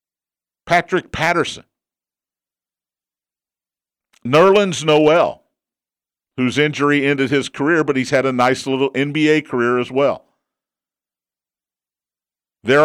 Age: 50-69